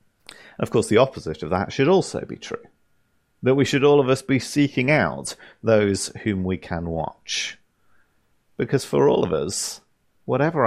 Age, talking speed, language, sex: 30-49, 170 wpm, English, male